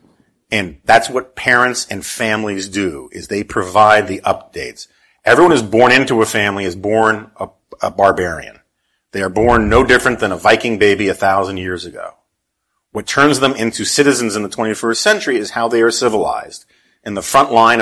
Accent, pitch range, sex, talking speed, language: American, 105-125 Hz, male, 180 wpm, English